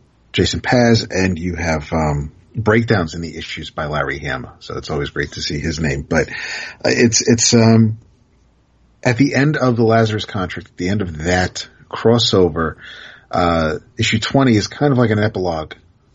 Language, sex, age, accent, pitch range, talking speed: English, male, 40-59, American, 80-115 Hz, 180 wpm